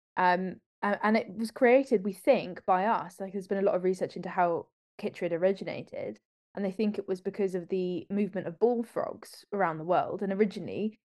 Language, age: English, 20-39